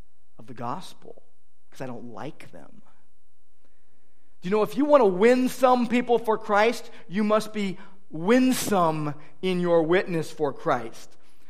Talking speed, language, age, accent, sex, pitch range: 150 wpm, English, 40-59, American, male, 125-210 Hz